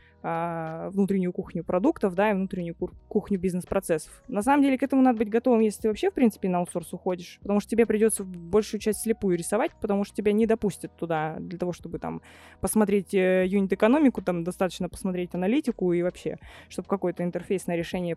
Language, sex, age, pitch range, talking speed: Russian, female, 20-39, 180-220 Hz, 180 wpm